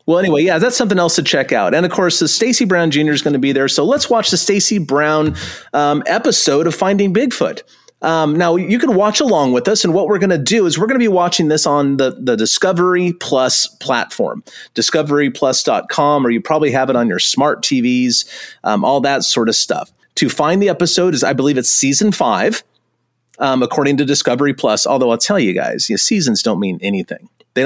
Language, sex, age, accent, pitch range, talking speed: English, male, 30-49, American, 140-195 Hz, 220 wpm